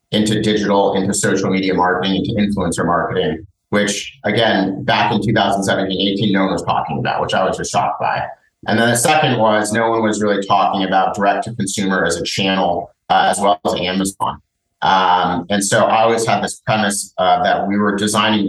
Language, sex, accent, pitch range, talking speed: English, male, American, 95-110 Hz, 190 wpm